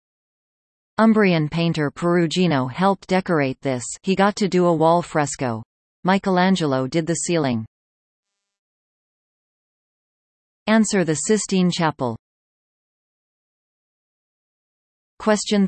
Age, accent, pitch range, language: 40-59, American, 140-195 Hz, English